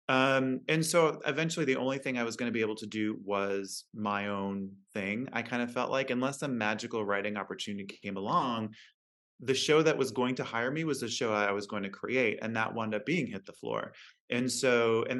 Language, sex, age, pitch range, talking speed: English, male, 20-39, 105-135 Hz, 225 wpm